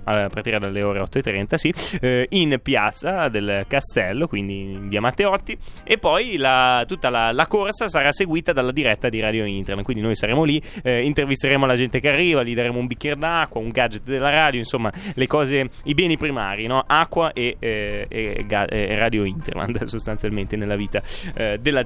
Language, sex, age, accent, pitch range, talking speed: Italian, male, 20-39, native, 110-140 Hz, 165 wpm